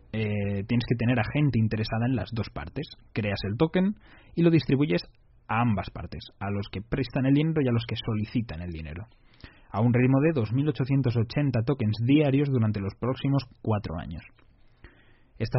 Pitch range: 110-140 Hz